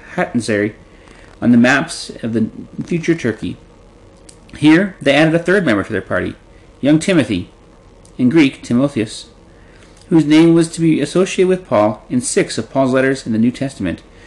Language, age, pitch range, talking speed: English, 40-59, 110-165 Hz, 165 wpm